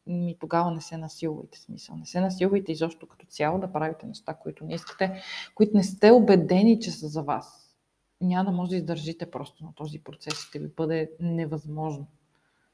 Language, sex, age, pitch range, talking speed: Bulgarian, female, 20-39, 160-200 Hz, 185 wpm